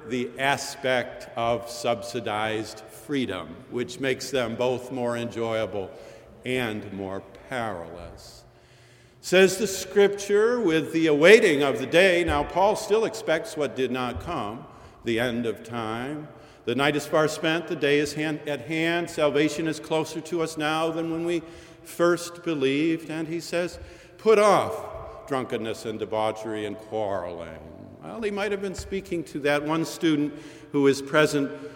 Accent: American